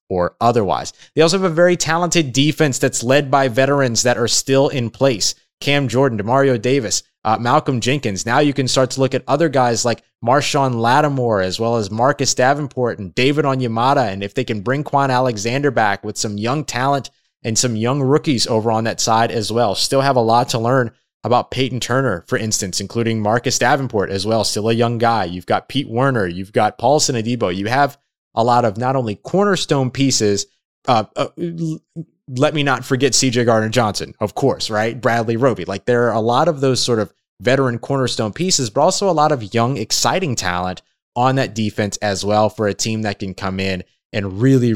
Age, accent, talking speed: 20-39, American, 200 wpm